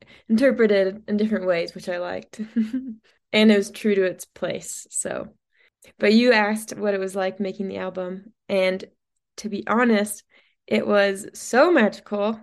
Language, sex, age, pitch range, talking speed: English, female, 20-39, 195-245 Hz, 160 wpm